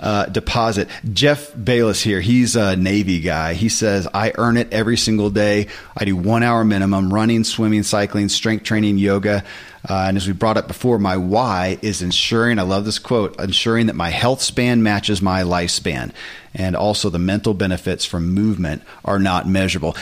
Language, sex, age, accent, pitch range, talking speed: English, male, 40-59, American, 100-120 Hz, 185 wpm